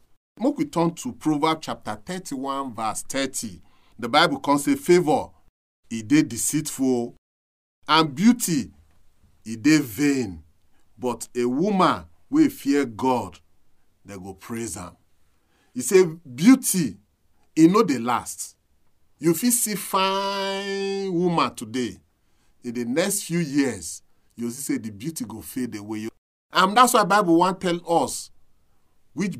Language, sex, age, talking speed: English, male, 40-59, 140 wpm